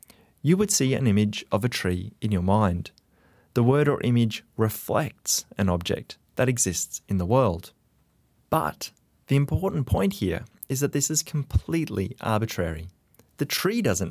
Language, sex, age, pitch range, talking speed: English, male, 30-49, 100-145 Hz, 155 wpm